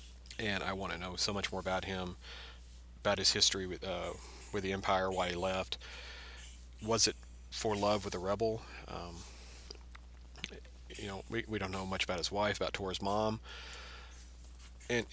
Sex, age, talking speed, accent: male, 40-59, 170 wpm, American